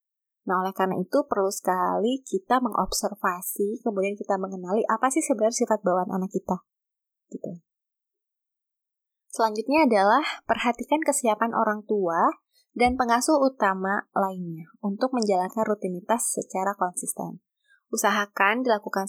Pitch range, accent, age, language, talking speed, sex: 190-235 Hz, native, 20-39, Indonesian, 115 wpm, female